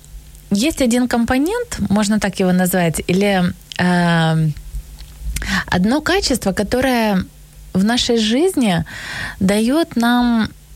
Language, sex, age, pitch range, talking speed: Ukrainian, female, 20-39, 180-240 Hz, 95 wpm